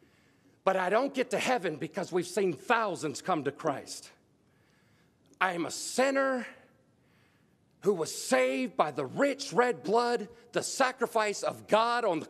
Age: 50-69